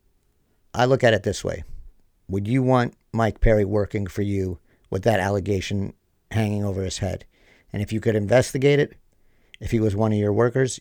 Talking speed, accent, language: 190 wpm, American, English